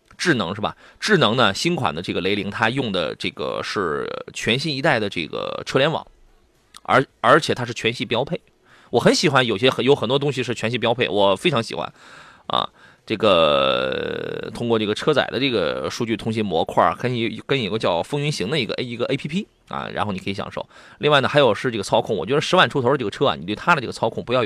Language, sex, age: Chinese, male, 30-49